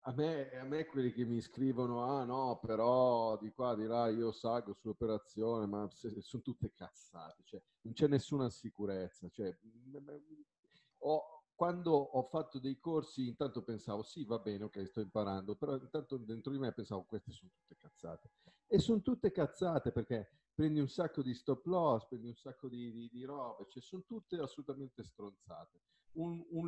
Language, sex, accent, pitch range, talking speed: Italian, male, native, 110-145 Hz, 180 wpm